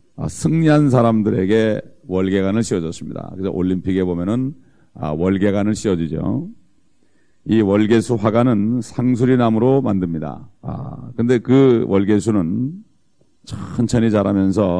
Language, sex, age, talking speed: English, male, 40-59, 85 wpm